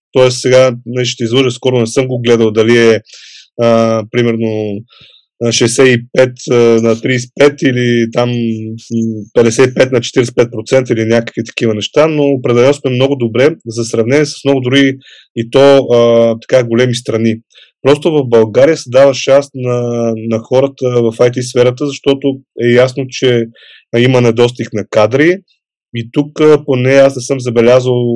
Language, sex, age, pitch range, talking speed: Bulgarian, male, 20-39, 115-135 Hz, 145 wpm